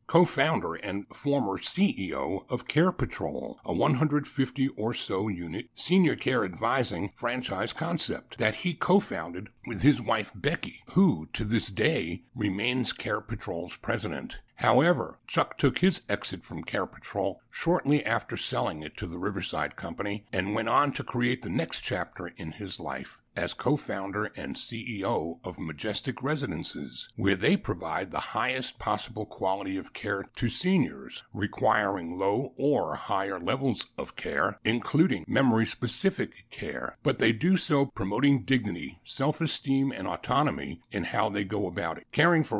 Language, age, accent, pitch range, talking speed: English, 60-79, American, 100-145 Hz, 150 wpm